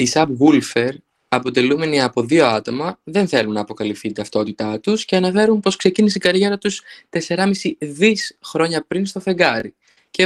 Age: 20-39